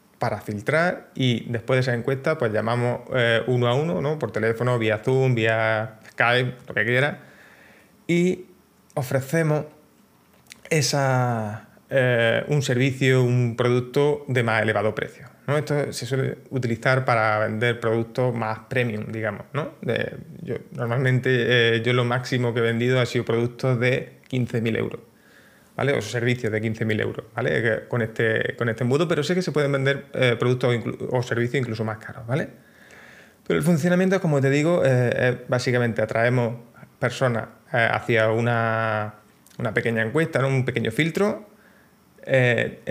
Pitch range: 115-135 Hz